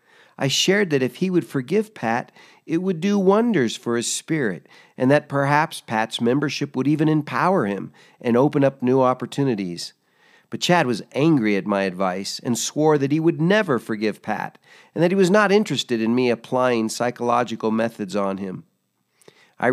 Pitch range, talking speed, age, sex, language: 110-145 Hz, 175 wpm, 50-69, male, English